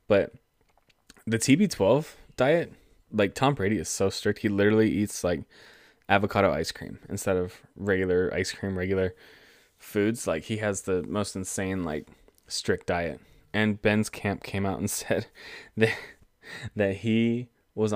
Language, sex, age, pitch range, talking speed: English, male, 20-39, 95-105 Hz, 150 wpm